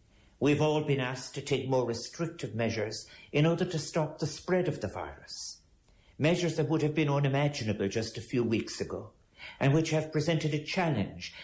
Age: 60-79